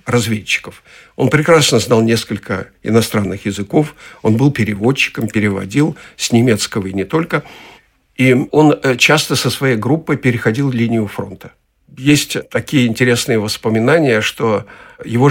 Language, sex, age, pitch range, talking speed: Russian, male, 50-69, 110-140 Hz, 120 wpm